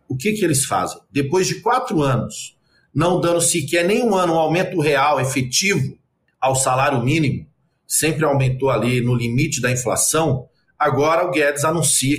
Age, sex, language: 50-69, male, Portuguese